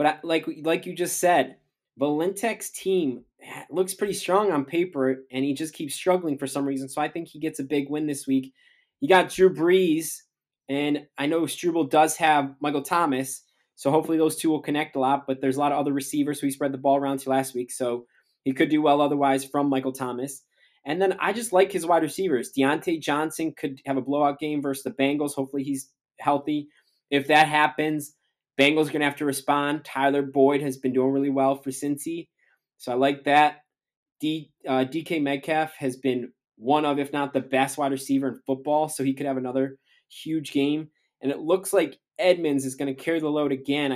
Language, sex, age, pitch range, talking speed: English, male, 20-39, 135-155 Hz, 215 wpm